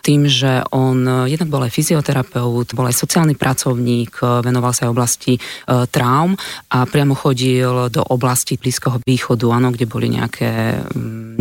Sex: female